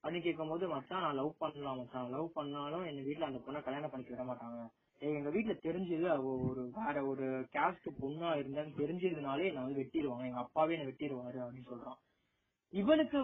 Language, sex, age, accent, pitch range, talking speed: Tamil, male, 20-39, native, 135-195 Hz, 115 wpm